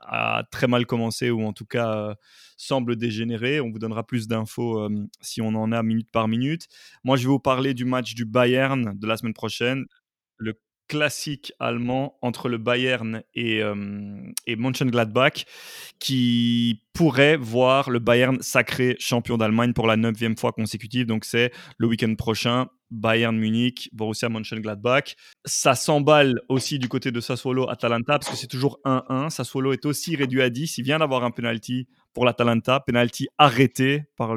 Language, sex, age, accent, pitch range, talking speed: French, male, 20-39, French, 115-135 Hz, 175 wpm